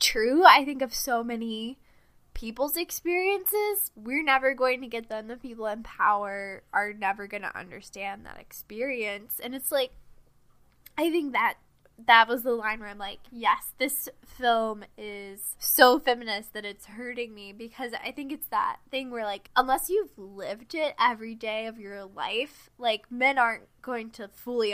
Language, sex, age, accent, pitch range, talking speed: English, female, 10-29, American, 205-270 Hz, 170 wpm